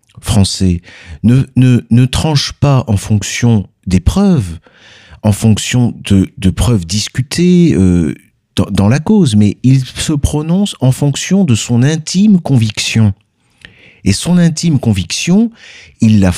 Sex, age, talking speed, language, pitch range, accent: male, 50-69, 135 wpm, French, 95-140 Hz, French